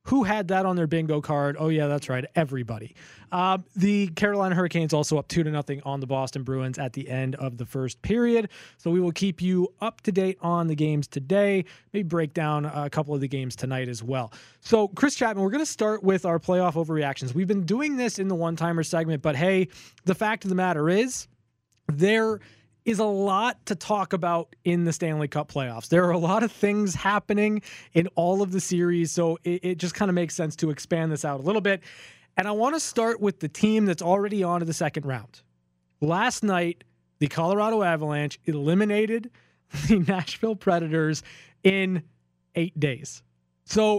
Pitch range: 150-200 Hz